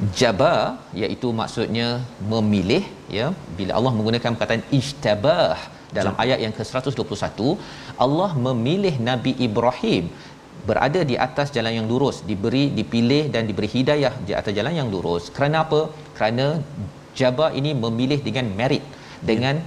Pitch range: 105-140 Hz